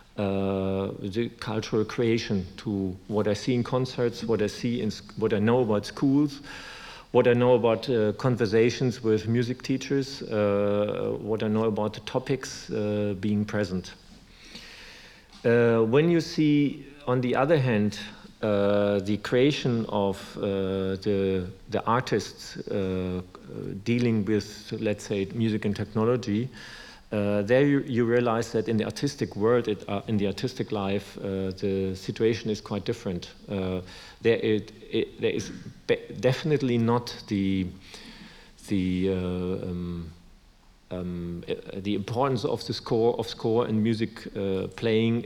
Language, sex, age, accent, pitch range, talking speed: German, male, 50-69, German, 100-120 Hz, 145 wpm